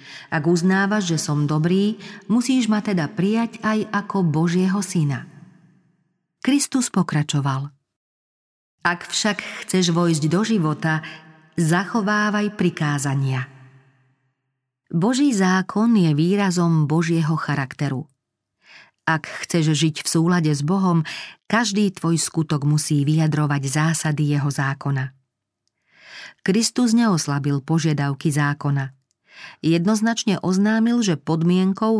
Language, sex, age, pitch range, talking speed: Slovak, female, 40-59, 145-195 Hz, 100 wpm